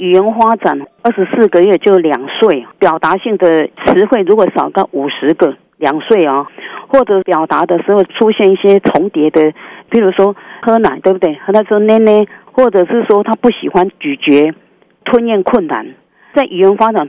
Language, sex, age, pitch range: Chinese, female, 50-69, 175-230 Hz